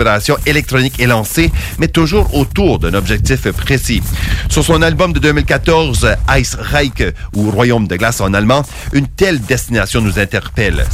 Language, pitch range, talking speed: English, 100-140 Hz, 145 wpm